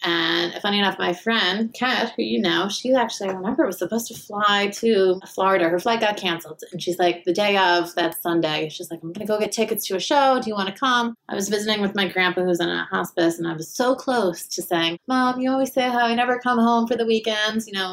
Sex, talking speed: female, 260 wpm